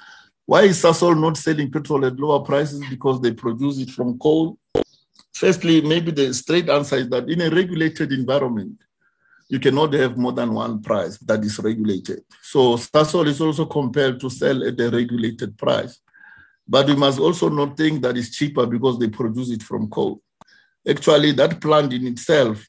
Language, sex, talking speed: English, male, 175 wpm